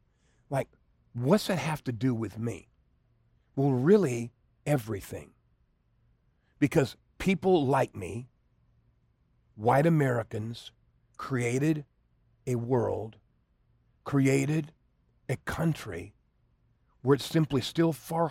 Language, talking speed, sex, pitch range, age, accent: English, 90 wpm, male, 110-150 Hz, 50-69, American